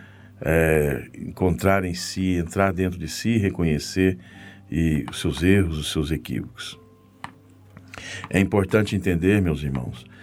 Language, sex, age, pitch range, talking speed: Portuguese, male, 60-79, 80-105 Hz, 125 wpm